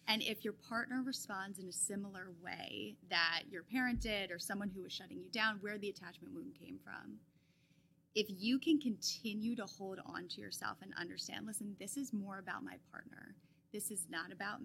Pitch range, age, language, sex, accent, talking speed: 180-230 Hz, 20-39, English, female, American, 195 wpm